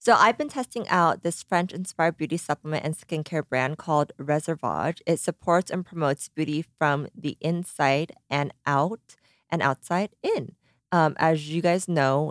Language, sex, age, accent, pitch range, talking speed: English, female, 20-39, American, 150-180 Hz, 155 wpm